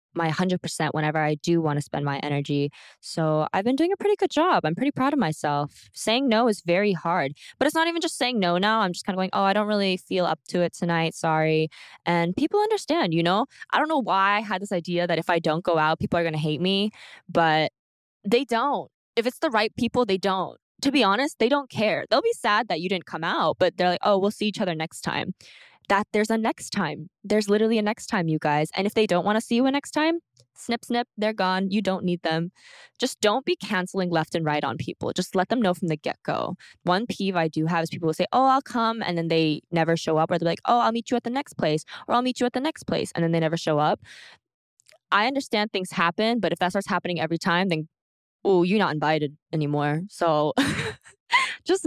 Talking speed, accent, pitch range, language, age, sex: 255 wpm, American, 165-235 Hz, English, 10-29, female